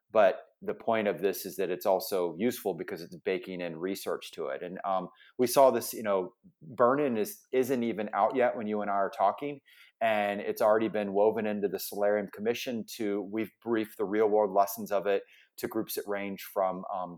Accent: American